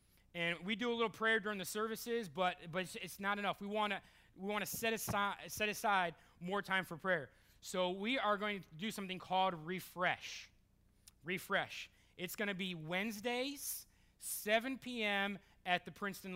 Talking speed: 170 wpm